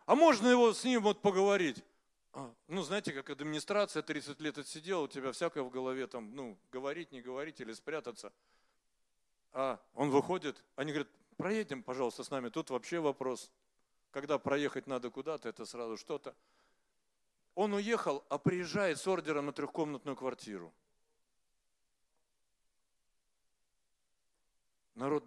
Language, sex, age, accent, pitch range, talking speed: Russian, male, 50-69, native, 125-190 Hz, 130 wpm